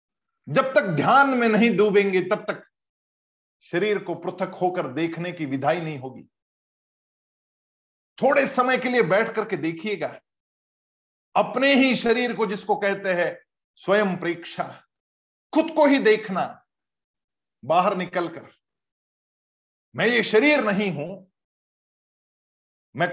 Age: 50-69